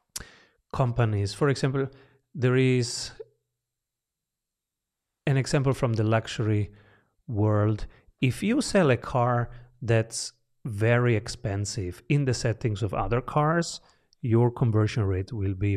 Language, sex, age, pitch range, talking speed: English, male, 30-49, 105-130 Hz, 115 wpm